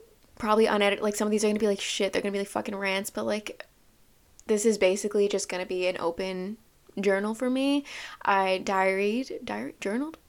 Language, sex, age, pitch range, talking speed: English, female, 20-39, 200-265 Hz, 190 wpm